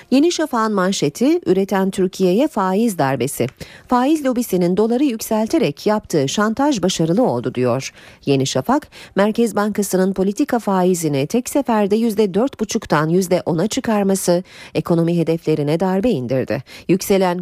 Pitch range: 155-220 Hz